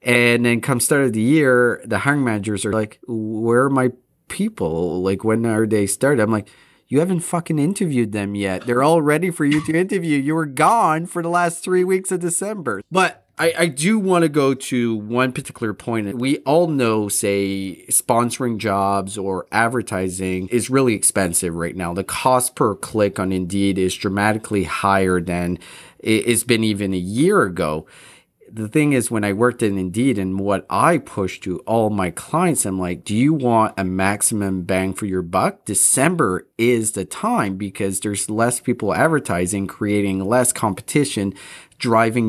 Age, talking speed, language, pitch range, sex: 30-49, 175 wpm, English, 100-130 Hz, male